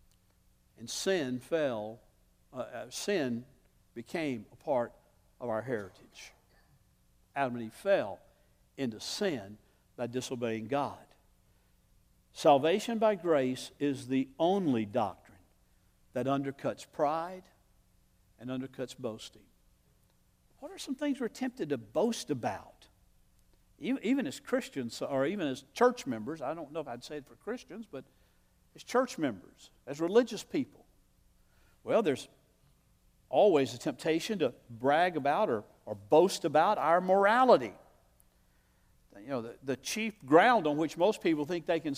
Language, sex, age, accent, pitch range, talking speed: English, male, 60-79, American, 130-215 Hz, 135 wpm